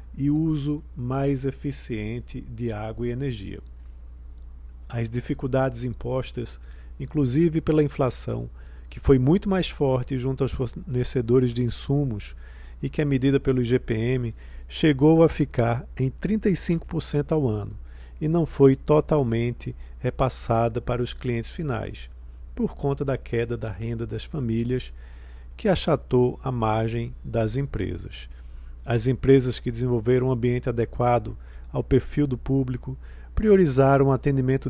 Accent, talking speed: Brazilian, 130 wpm